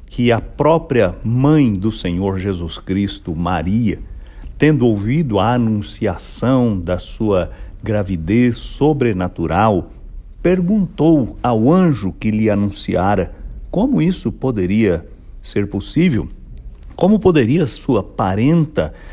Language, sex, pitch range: English, male, 95-120 Hz